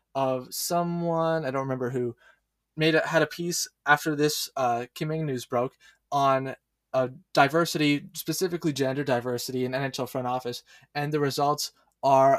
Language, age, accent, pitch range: English, 20-39, American, 130-160 Hz